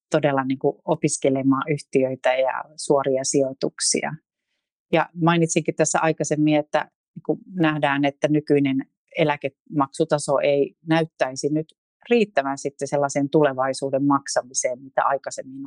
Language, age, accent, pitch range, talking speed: Finnish, 40-59, native, 135-175 Hz, 95 wpm